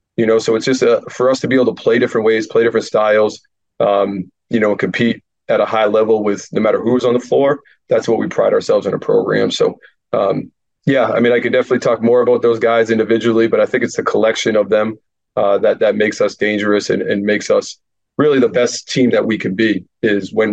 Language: English